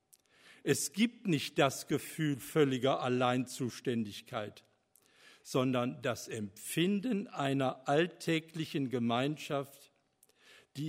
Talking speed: 75 wpm